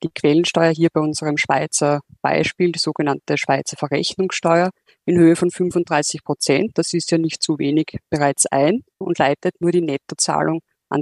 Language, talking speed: German, 165 wpm